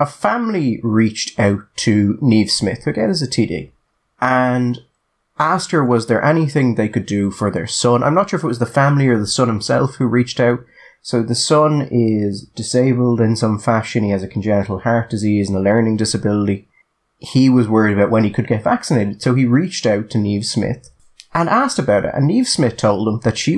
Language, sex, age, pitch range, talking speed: English, male, 20-39, 100-125 Hz, 215 wpm